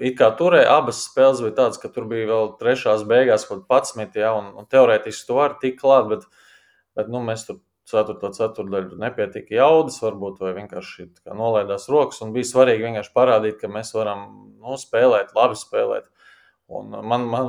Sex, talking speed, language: male, 180 wpm, English